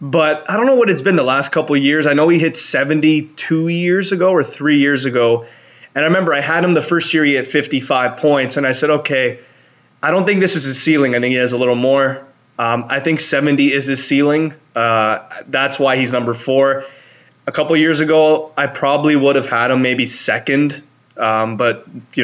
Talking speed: 225 wpm